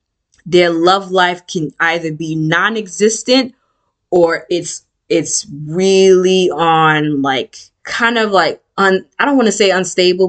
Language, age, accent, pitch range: English, 20-39, American, 160-205 Hz